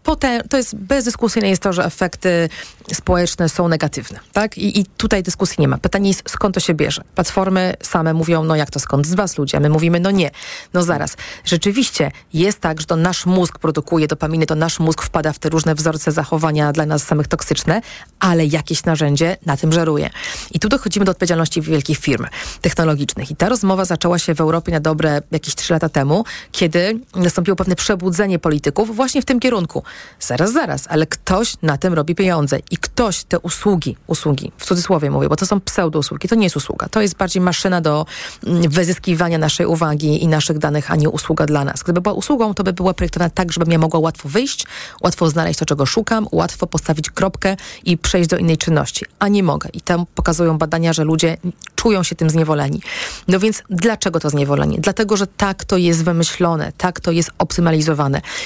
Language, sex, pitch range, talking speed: Polish, female, 160-190 Hz, 200 wpm